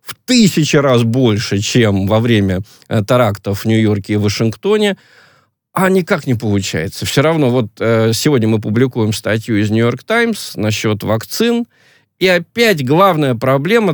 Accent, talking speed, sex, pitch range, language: native, 145 wpm, male, 110-160 Hz, Russian